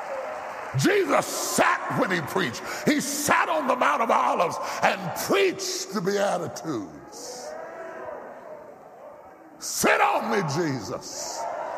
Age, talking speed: 60-79, 100 wpm